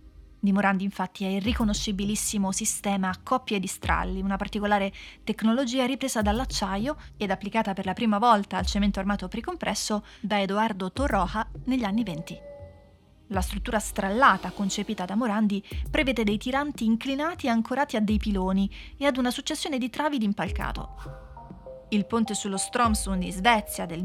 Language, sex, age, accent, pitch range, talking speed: Italian, female, 30-49, native, 195-235 Hz, 150 wpm